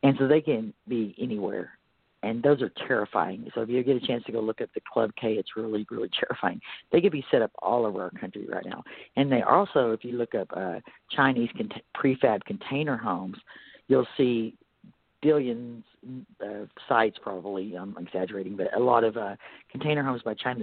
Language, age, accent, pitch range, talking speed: English, 50-69, American, 110-140 Hz, 195 wpm